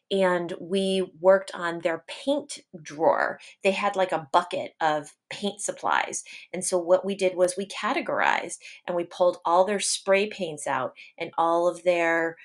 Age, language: 30-49, English